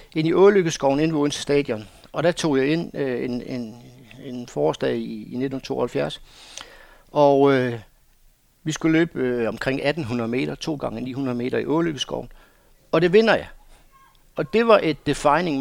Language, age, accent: Danish, 60-79, native